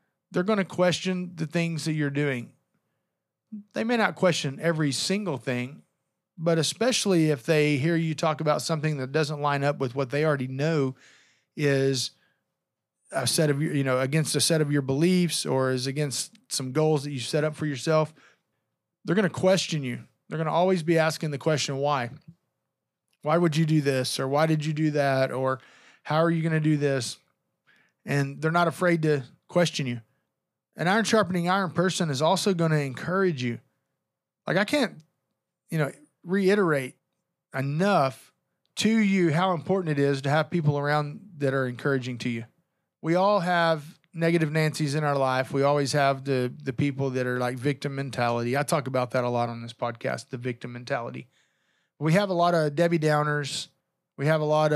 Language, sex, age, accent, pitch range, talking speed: English, male, 40-59, American, 135-170 Hz, 190 wpm